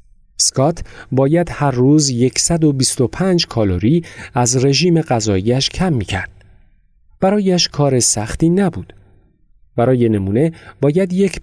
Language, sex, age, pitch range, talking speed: Persian, male, 40-59, 105-165 Hz, 100 wpm